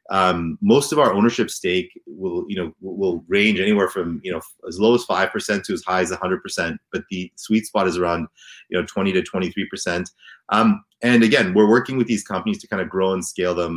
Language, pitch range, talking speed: English, 90-125 Hz, 230 wpm